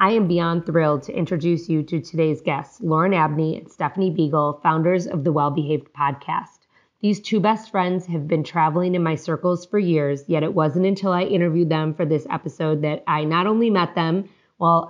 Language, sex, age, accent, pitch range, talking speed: English, female, 30-49, American, 160-185 Hz, 200 wpm